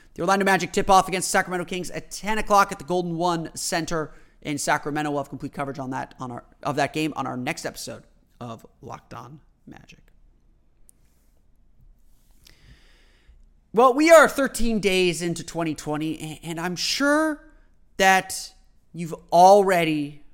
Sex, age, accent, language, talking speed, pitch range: male, 30-49, American, English, 150 wpm, 145-180 Hz